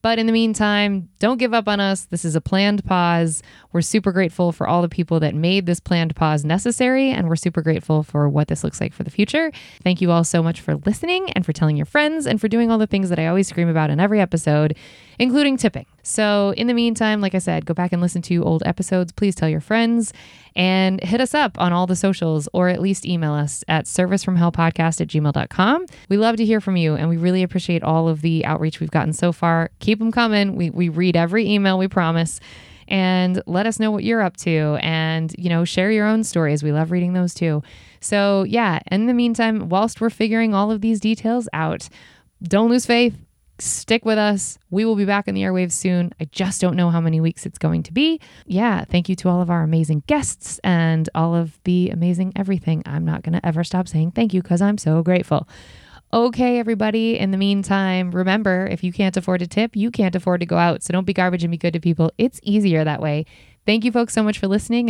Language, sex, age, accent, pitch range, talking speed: English, female, 20-39, American, 165-215 Hz, 235 wpm